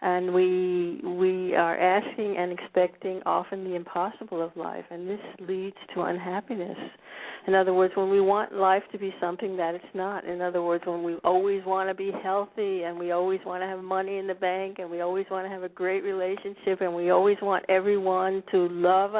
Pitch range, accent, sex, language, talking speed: 180-200 Hz, American, female, English, 205 wpm